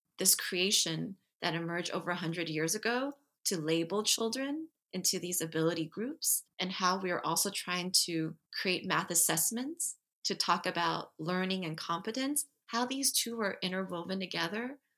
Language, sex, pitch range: English, female, 170-220 Hz